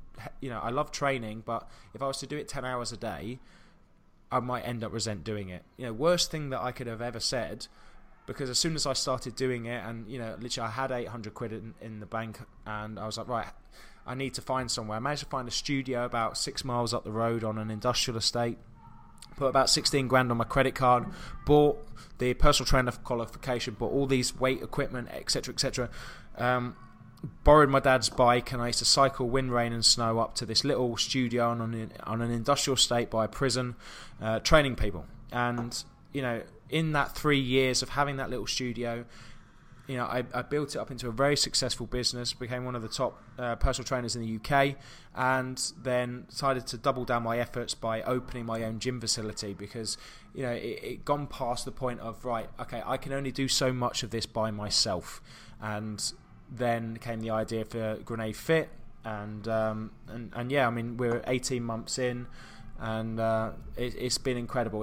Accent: British